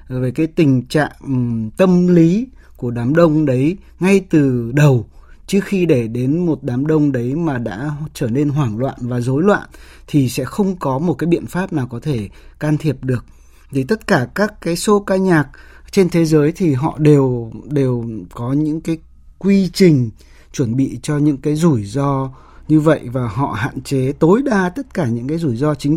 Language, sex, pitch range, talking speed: Vietnamese, male, 125-160 Hz, 200 wpm